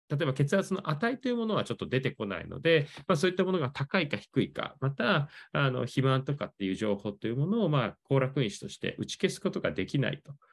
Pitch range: 115-175 Hz